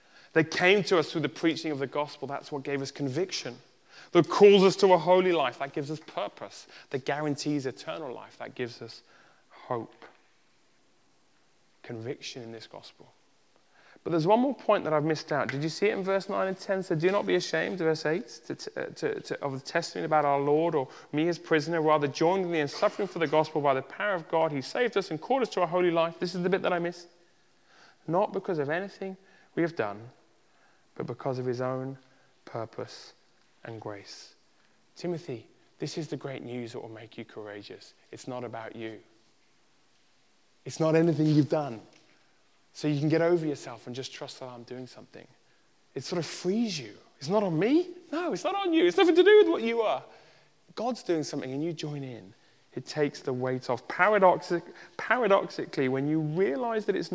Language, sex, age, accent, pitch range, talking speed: English, male, 30-49, British, 135-185 Hz, 200 wpm